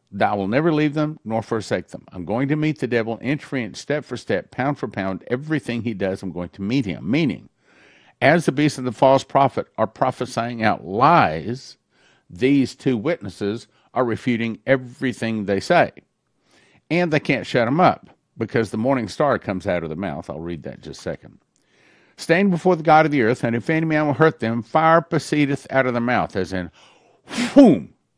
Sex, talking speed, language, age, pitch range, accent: male, 200 wpm, English, 50-69, 110-150 Hz, American